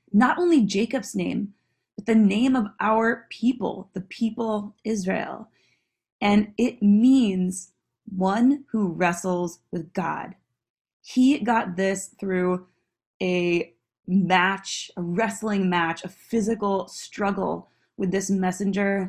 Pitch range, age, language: 185-220 Hz, 20-39, English